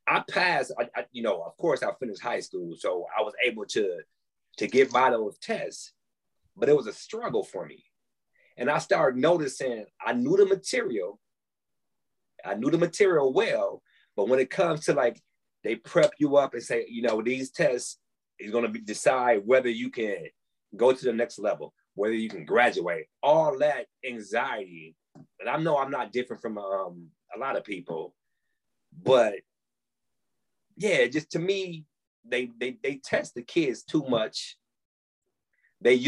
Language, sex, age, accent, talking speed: English, male, 30-49, American, 175 wpm